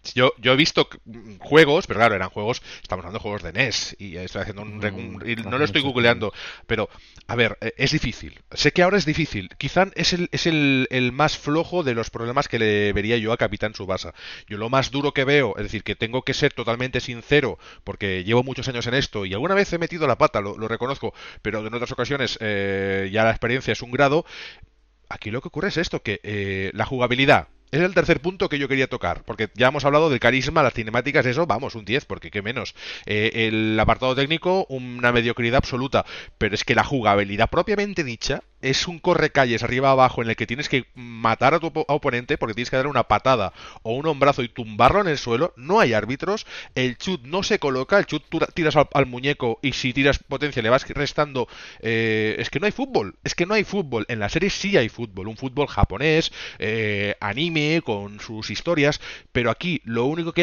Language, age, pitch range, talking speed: Spanish, 30-49, 110-150 Hz, 220 wpm